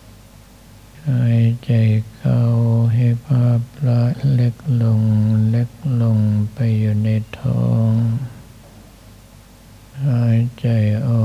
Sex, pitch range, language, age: male, 110-120 Hz, Thai, 60-79